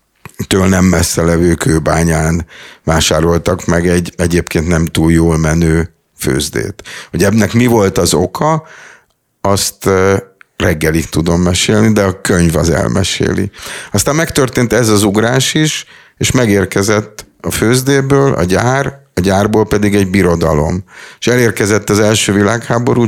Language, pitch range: Hungarian, 90-110 Hz